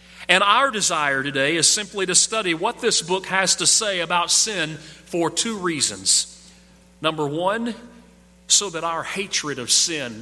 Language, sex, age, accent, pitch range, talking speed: English, male, 40-59, American, 150-200 Hz, 160 wpm